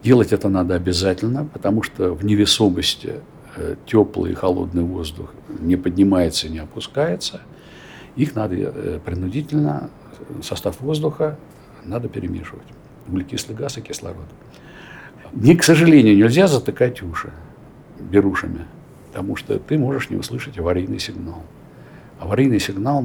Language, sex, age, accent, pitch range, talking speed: Russian, male, 60-79, native, 95-145 Hz, 115 wpm